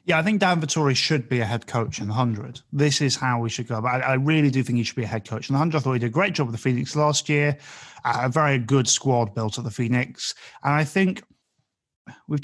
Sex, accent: male, British